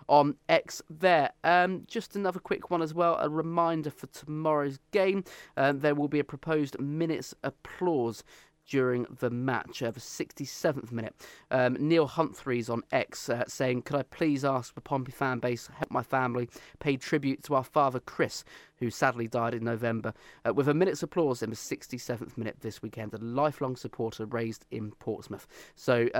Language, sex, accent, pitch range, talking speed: English, male, British, 120-155 Hz, 185 wpm